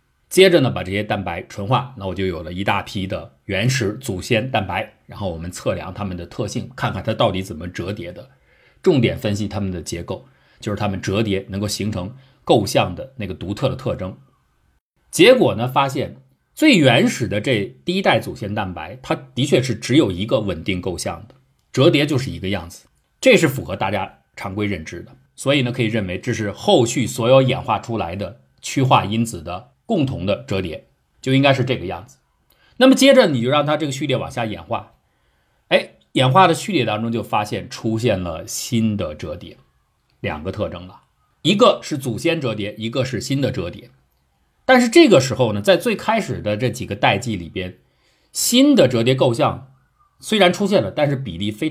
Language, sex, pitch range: Chinese, male, 100-135 Hz